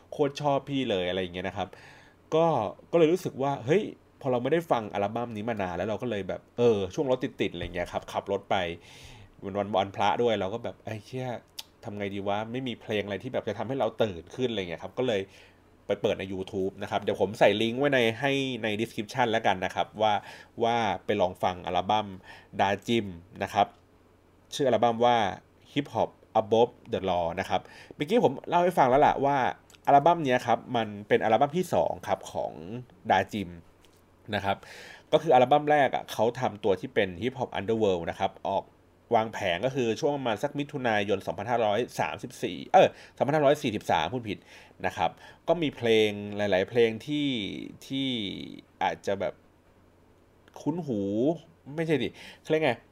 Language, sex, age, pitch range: Thai, male, 30-49, 95-130 Hz